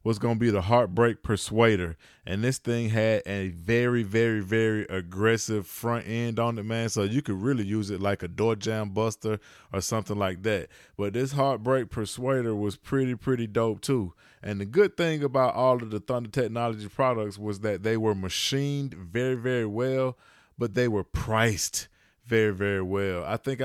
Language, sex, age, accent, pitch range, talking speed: English, male, 20-39, American, 105-125 Hz, 185 wpm